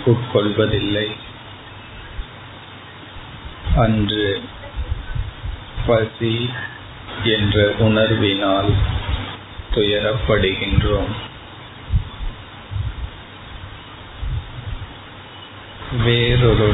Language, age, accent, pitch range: Tamil, 50-69, native, 100-115 Hz